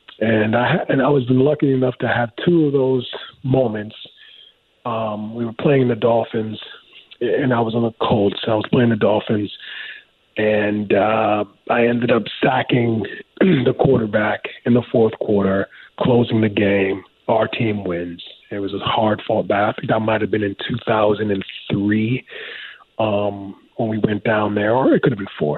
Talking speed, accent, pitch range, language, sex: 165 wpm, American, 105-125 Hz, English, male